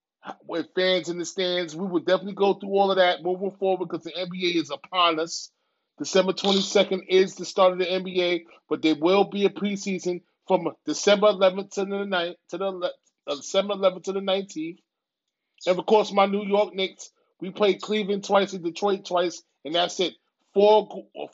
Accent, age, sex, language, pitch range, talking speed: American, 30-49, male, English, 165-195 Hz, 190 wpm